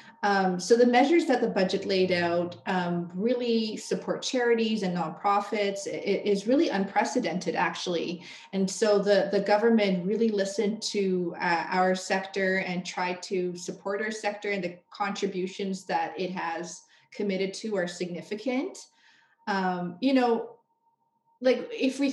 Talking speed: 140 wpm